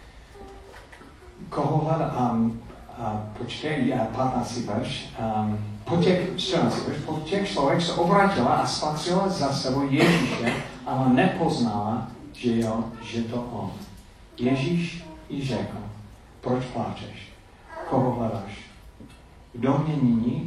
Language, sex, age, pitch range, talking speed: Czech, male, 40-59, 110-135 Hz, 105 wpm